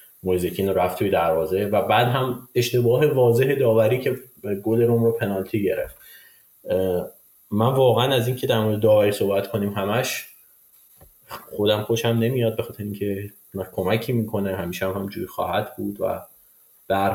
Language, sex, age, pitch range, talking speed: Persian, male, 30-49, 95-115 Hz, 150 wpm